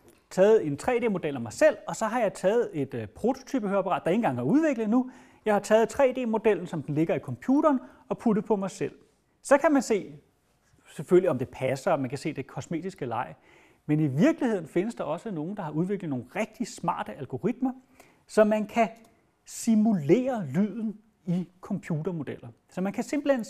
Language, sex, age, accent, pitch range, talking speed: Danish, male, 30-49, native, 155-225 Hz, 185 wpm